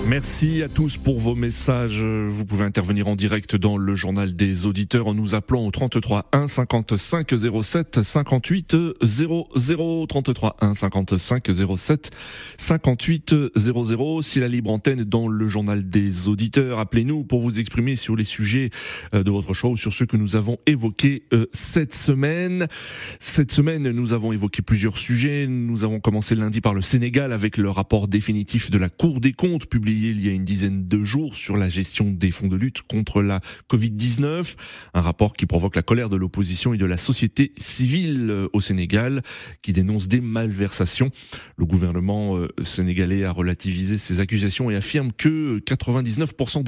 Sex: male